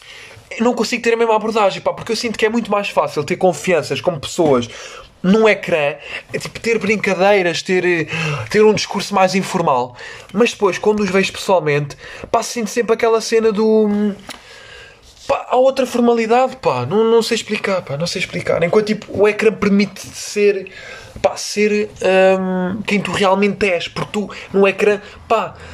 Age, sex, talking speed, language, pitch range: 20-39, male, 175 wpm, Portuguese, 180-220 Hz